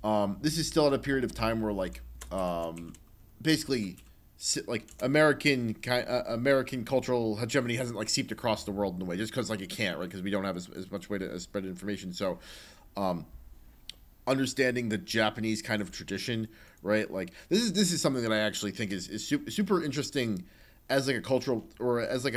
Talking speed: 205 wpm